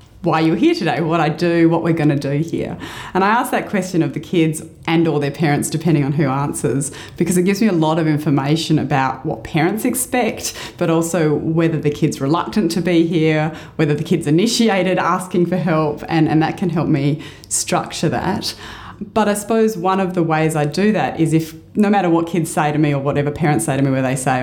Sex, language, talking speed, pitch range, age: female, English, 230 wpm, 145-180 Hz, 30-49